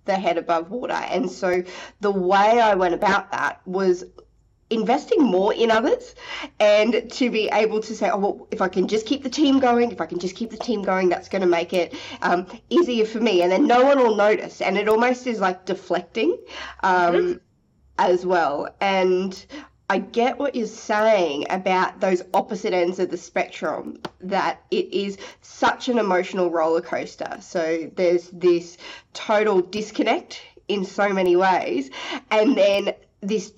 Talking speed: 175 wpm